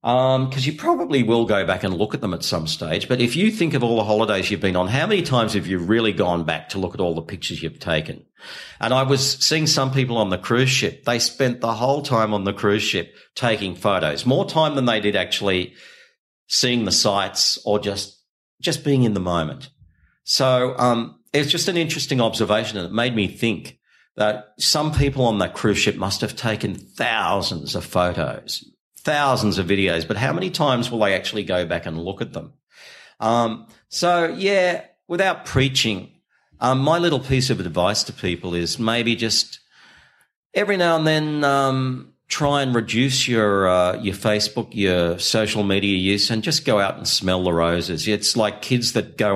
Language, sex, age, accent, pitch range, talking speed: English, male, 50-69, Australian, 100-130 Hz, 200 wpm